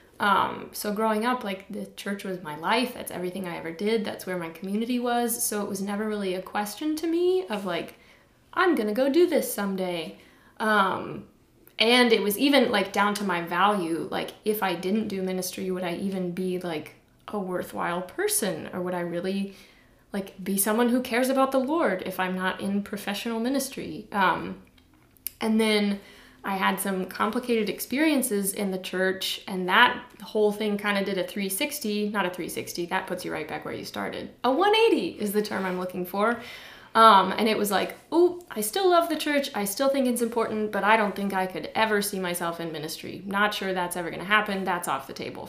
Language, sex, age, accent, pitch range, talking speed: English, female, 20-39, American, 185-225 Hz, 205 wpm